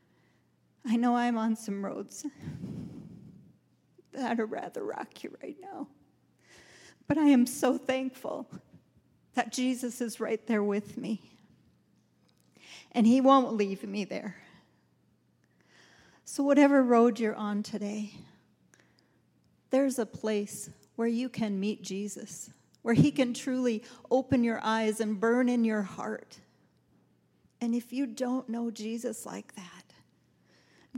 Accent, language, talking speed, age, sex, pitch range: American, English, 125 wpm, 40-59, female, 215-255 Hz